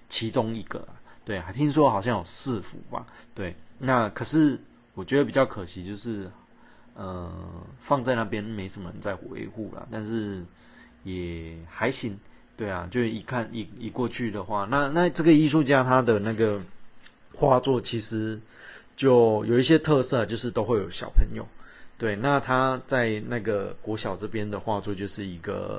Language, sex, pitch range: Chinese, male, 100-125 Hz